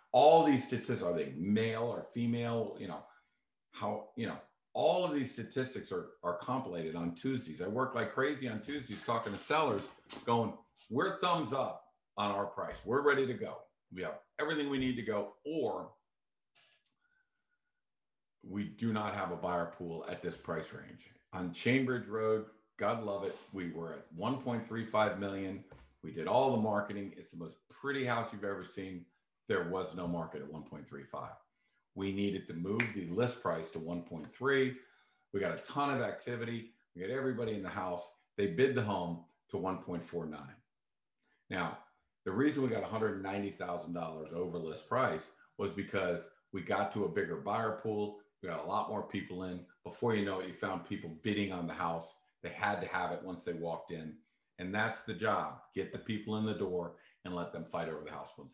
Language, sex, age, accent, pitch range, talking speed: English, male, 50-69, American, 90-120 Hz, 185 wpm